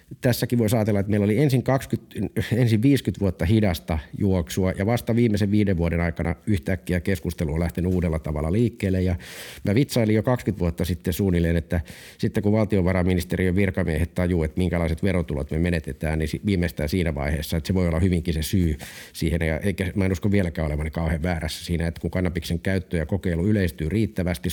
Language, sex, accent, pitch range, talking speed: Finnish, male, native, 85-105 Hz, 185 wpm